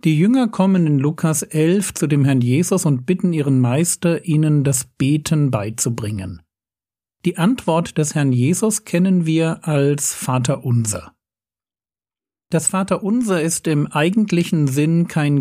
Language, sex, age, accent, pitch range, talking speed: German, male, 50-69, German, 135-175 Hz, 140 wpm